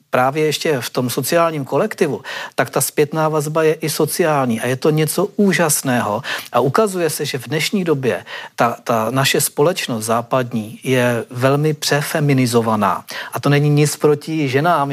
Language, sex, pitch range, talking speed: Czech, male, 135-160 Hz, 155 wpm